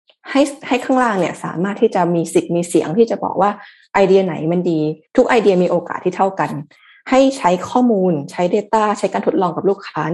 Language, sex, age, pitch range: Thai, female, 20-39, 160-205 Hz